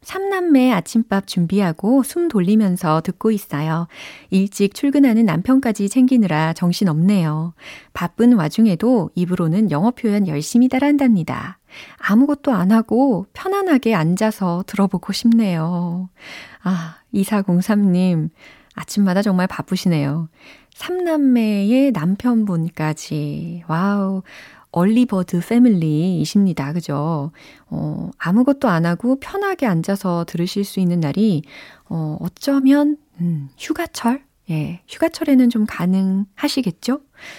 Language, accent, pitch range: Korean, native, 170-230 Hz